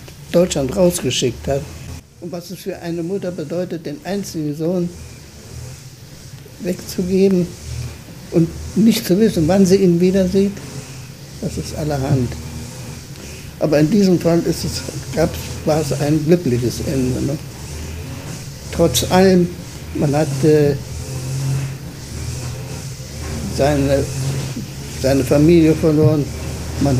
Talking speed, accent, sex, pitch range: 95 wpm, German, male, 135-170 Hz